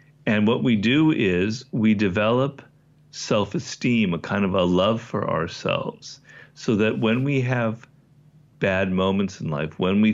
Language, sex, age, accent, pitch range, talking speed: English, male, 50-69, American, 95-140 Hz, 155 wpm